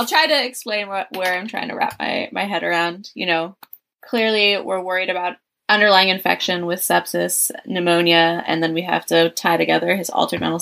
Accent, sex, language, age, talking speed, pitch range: American, female, English, 20-39, 190 wpm, 165-190 Hz